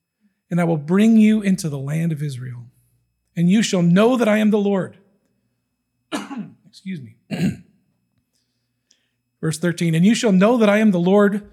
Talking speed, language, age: 165 wpm, English, 40-59